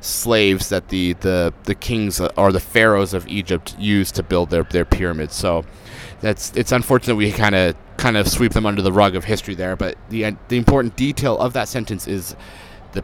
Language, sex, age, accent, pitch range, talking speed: English, male, 30-49, American, 95-125 Hz, 205 wpm